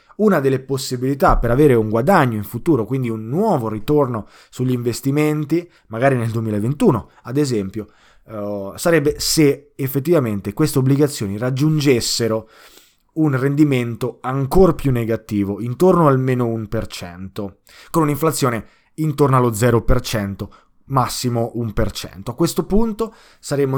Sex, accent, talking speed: male, native, 115 wpm